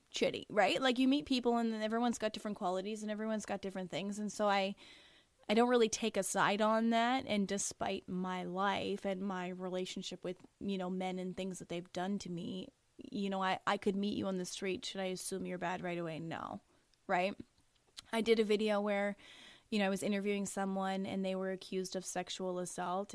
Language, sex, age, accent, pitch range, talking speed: English, female, 20-39, American, 185-215 Hz, 215 wpm